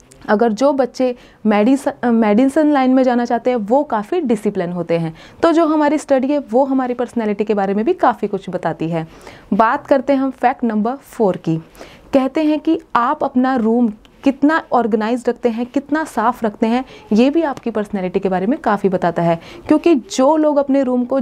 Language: Hindi